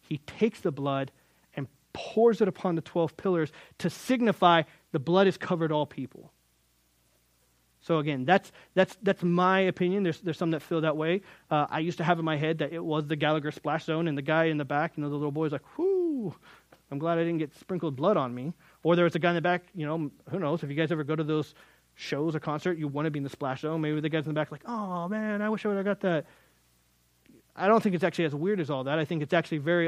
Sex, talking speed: male, 265 wpm